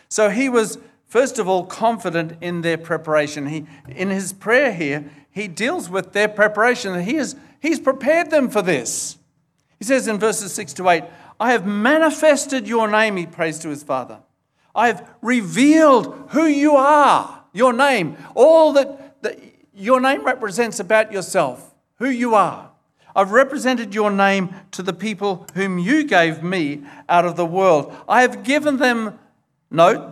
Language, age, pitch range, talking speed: English, 50-69, 170-245 Hz, 165 wpm